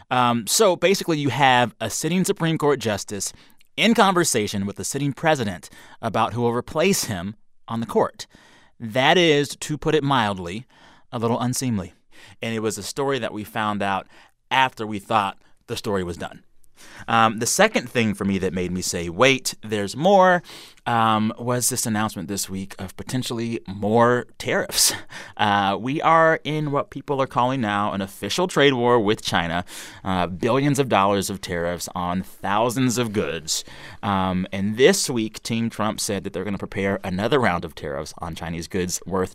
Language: English